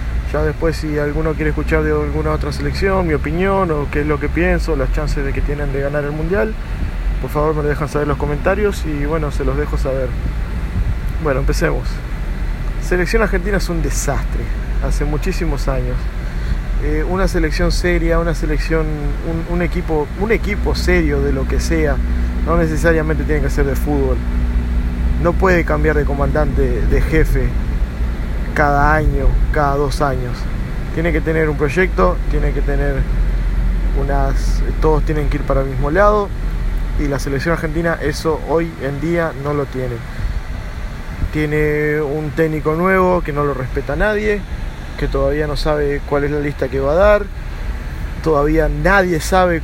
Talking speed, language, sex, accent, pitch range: 170 wpm, Spanish, male, Argentinian, 130-165 Hz